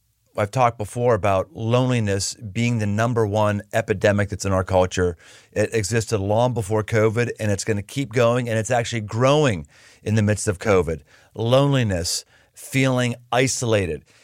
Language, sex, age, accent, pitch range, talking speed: English, male, 40-59, American, 110-150 Hz, 155 wpm